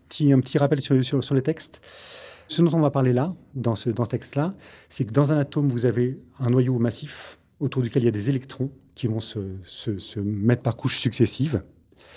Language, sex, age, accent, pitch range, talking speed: French, male, 30-49, French, 115-140 Hz, 225 wpm